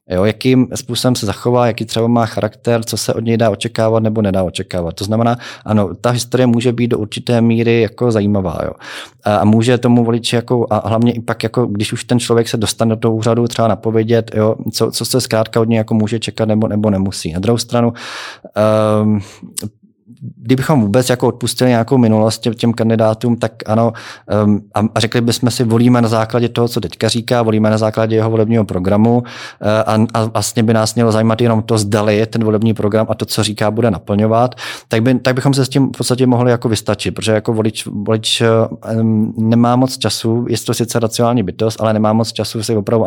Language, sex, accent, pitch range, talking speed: Czech, male, native, 110-120 Hz, 200 wpm